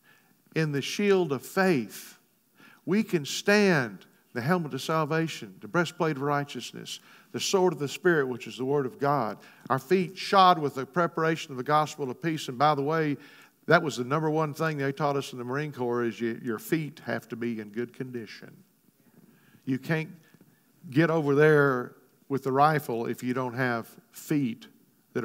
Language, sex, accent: English, male, American